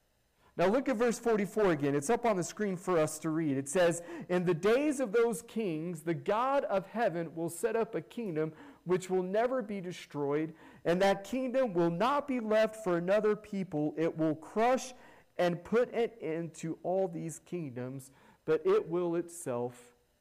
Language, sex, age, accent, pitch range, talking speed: English, male, 40-59, American, 165-240 Hz, 185 wpm